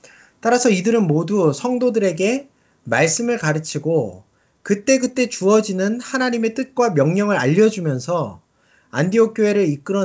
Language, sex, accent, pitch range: Korean, male, native, 145-220 Hz